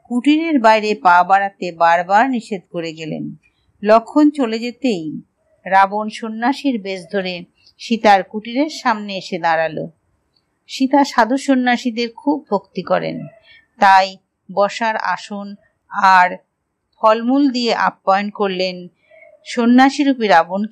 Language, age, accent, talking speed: Hindi, 50-69, native, 55 wpm